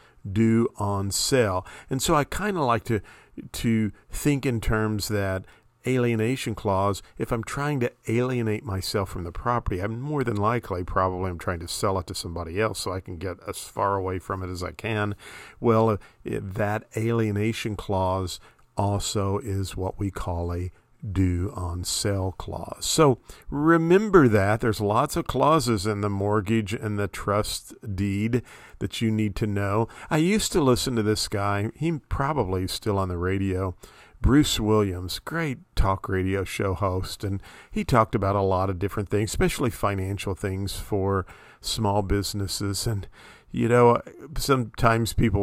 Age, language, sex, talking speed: 50-69, English, male, 165 wpm